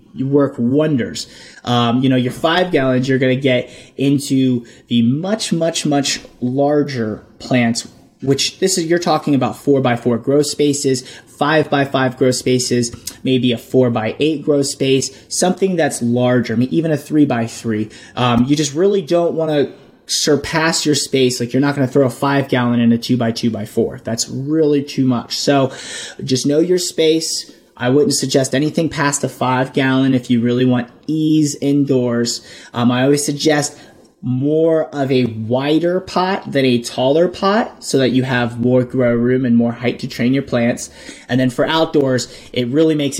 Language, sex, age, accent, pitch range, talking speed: English, male, 30-49, American, 125-145 Hz, 190 wpm